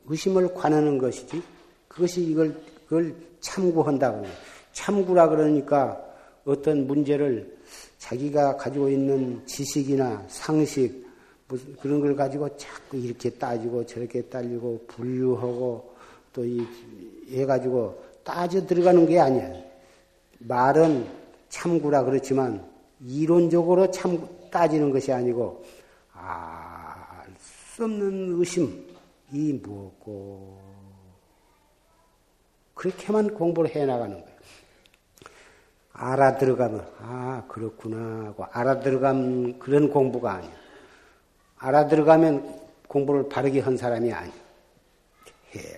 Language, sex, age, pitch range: Korean, male, 50-69, 125-160 Hz